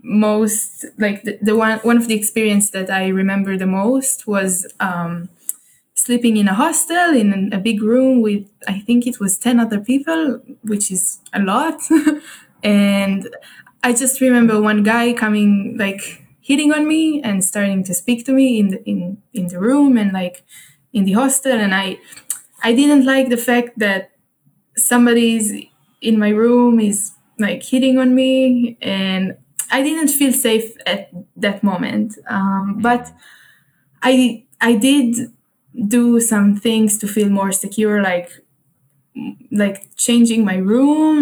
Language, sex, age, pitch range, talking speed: English, female, 20-39, 195-245 Hz, 155 wpm